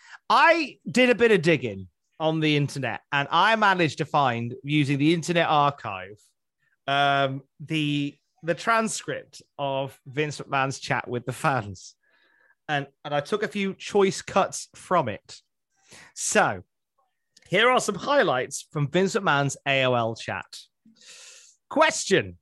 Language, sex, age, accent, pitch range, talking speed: English, male, 30-49, British, 140-215 Hz, 135 wpm